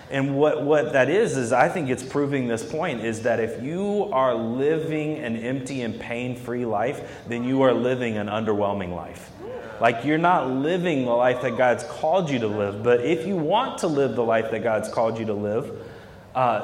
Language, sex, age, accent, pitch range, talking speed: English, male, 30-49, American, 115-145 Hz, 205 wpm